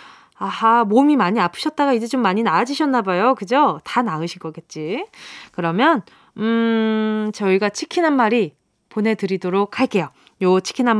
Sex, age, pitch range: female, 20-39, 205-310 Hz